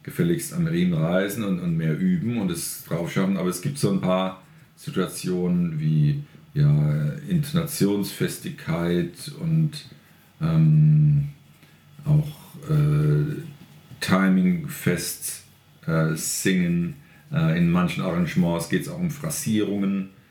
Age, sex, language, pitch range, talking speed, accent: 40-59, male, German, 130-165 Hz, 115 wpm, German